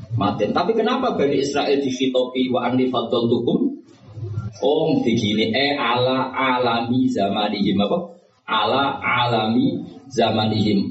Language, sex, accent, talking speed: Indonesian, male, native, 85 wpm